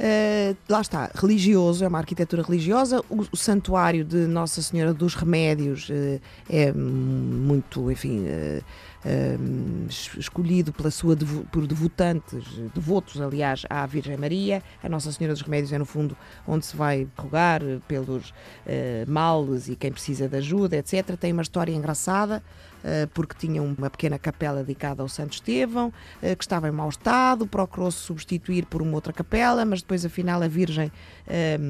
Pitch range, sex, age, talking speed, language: 140-175 Hz, female, 20-39, 150 wpm, Portuguese